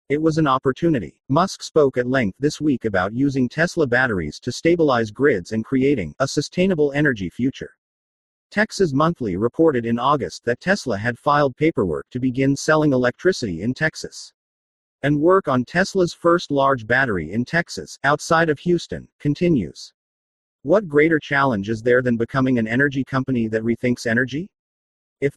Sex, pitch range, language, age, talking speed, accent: male, 120-160 Hz, English, 40-59, 155 wpm, American